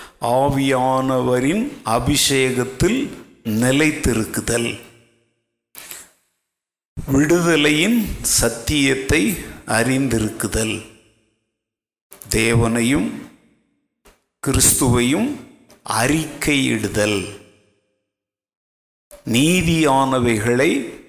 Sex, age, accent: male, 50-69, native